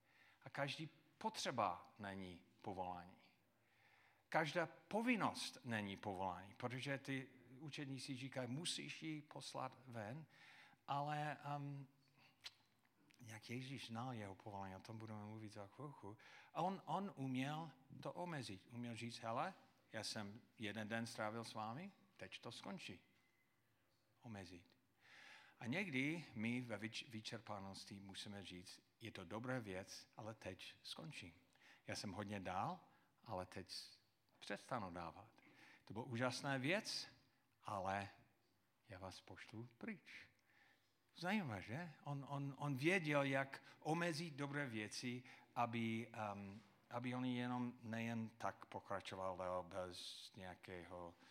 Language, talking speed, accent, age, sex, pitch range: Czech, 120 wpm, native, 50-69, male, 100-135 Hz